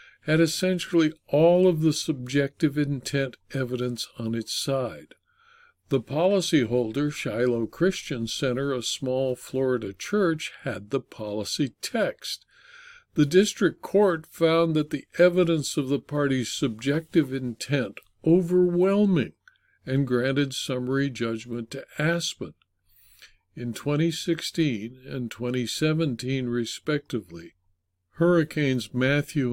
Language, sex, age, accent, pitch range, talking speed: English, male, 60-79, American, 120-160 Hz, 100 wpm